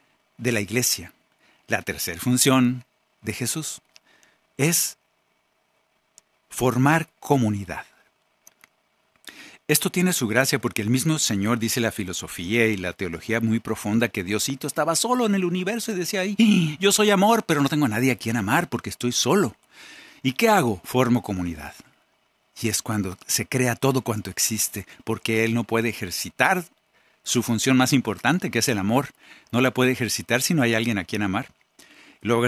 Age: 50-69